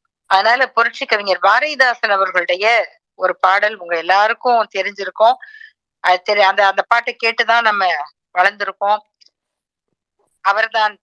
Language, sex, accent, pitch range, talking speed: Tamil, female, native, 190-260 Hz, 80 wpm